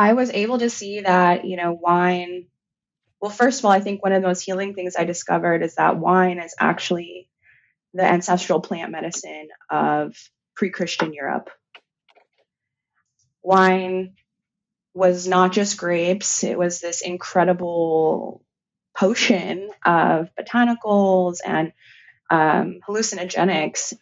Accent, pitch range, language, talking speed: American, 165-195 Hz, English, 125 wpm